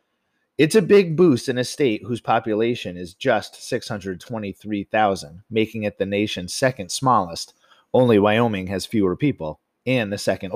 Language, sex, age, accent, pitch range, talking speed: English, male, 30-49, American, 100-135 Hz, 150 wpm